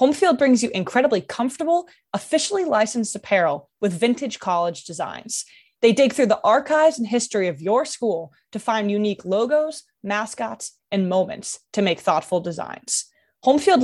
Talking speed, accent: 150 wpm, American